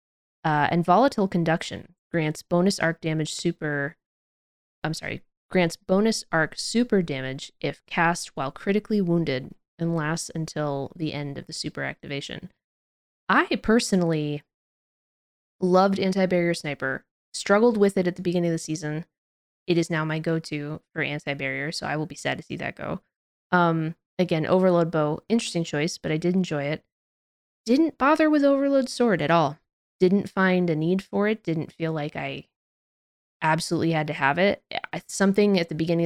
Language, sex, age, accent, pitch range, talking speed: English, female, 20-39, American, 155-195 Hz, 165 wpm